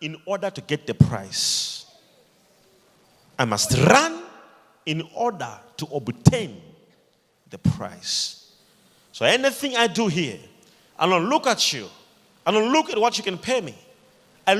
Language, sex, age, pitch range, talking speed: English, male, 40-59, 185-260 Hz, 145 wpm